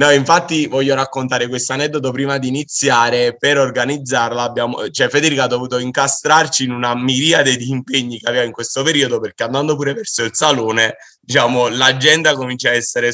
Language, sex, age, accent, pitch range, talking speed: Italian, male, 30-49, native, 120-145 Hz, 170 wpm